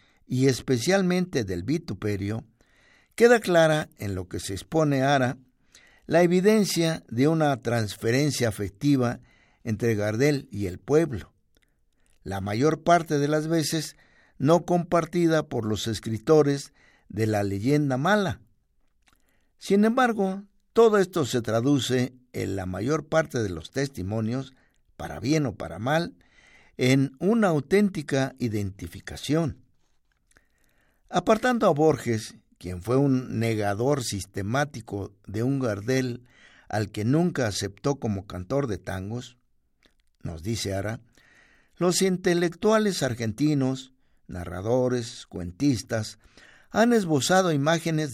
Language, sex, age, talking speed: Spanish, male, 60-79, 110 wpm